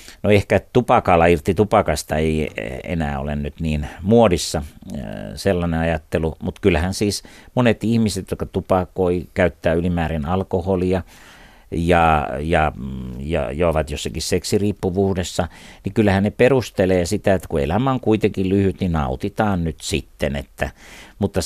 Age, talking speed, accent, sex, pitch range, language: 60-79, 130 wpm, native, male, 80-100 Hz, Finnish